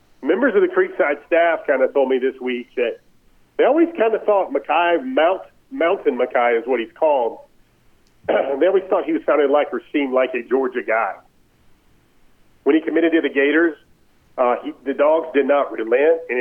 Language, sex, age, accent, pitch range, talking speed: English, male, 40-59, American, 140-180 Hz, 195 wpm